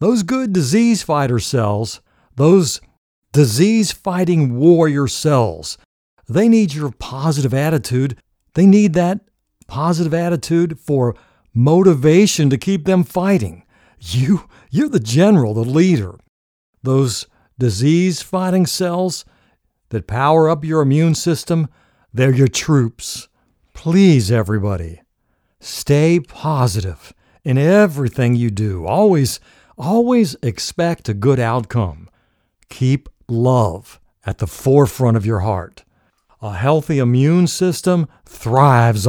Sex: male